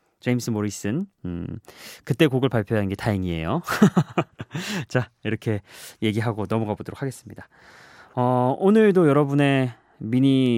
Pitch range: 105-150 Hz